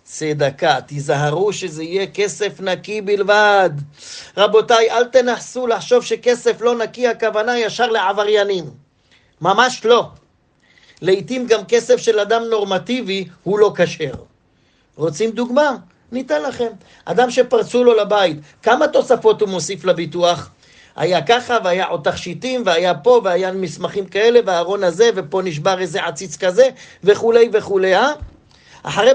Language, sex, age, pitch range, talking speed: Hebrew, male, 40-59, 190-250 Hz, 125 wpm